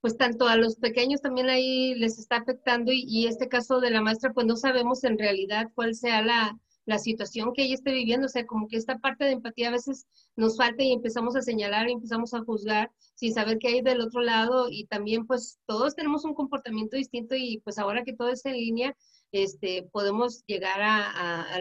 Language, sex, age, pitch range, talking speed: Spanish, female, 40-59, 210-255 Hz, 220 wpm